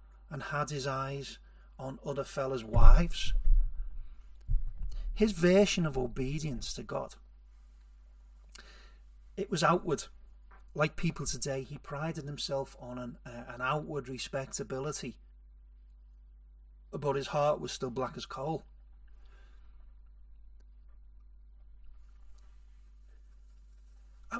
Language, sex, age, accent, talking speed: English, male, 40-59, British, 95 wpm